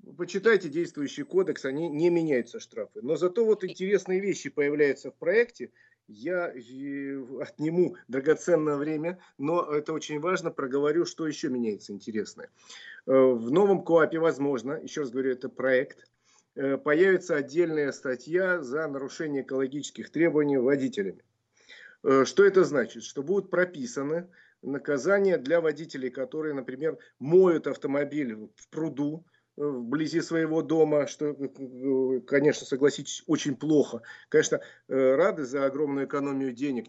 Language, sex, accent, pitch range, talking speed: Russian, male, native, 130-170 Hz, 120 wpm